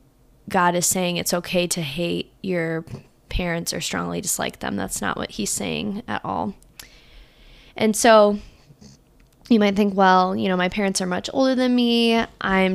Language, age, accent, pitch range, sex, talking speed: English, 20-39, American, 180-210 Hz, female, 170 wpm